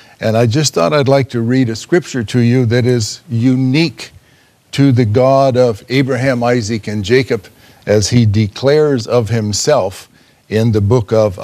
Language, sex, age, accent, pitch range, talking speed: English, male, 60-79, American, 115-140 Hz, 170 wpm